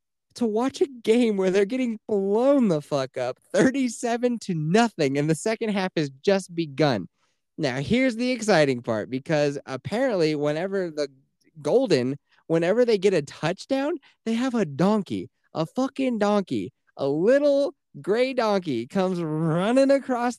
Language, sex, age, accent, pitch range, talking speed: English, male, 20-39, American, 150-225 Hz, 145 wpm